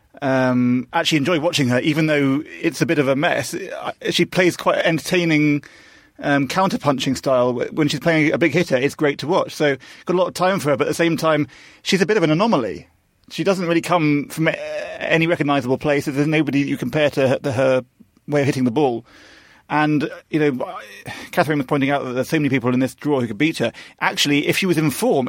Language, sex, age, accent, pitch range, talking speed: English, male, 30-49, British, 135-175 Hz, 225 wpm